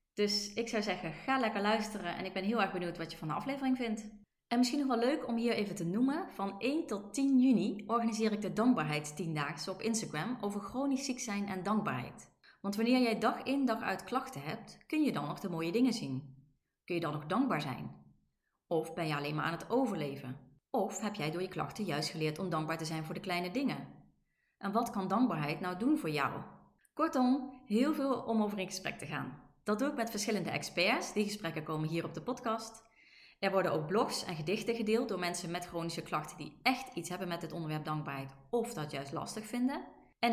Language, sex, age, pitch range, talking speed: Dutch, female, 30-49, 170-240 Hz, 225 wpm